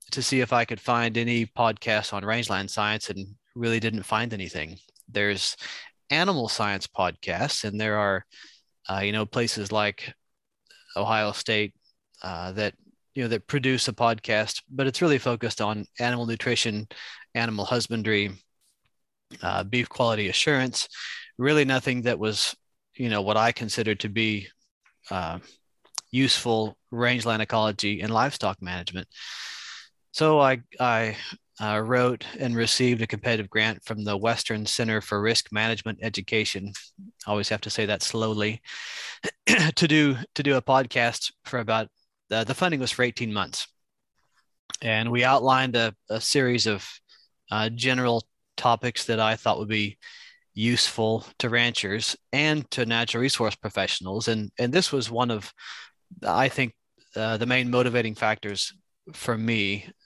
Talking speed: 145 wpm